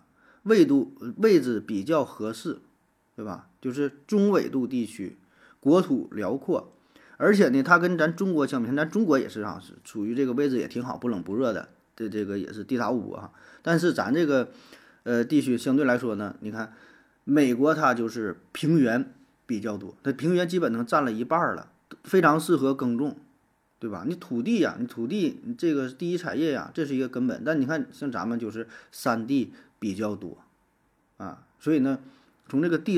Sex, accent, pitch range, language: male, native, 110-160 Hz, Chinese